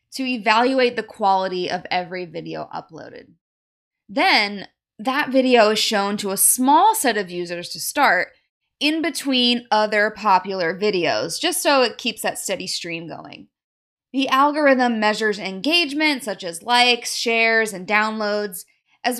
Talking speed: 140 wpm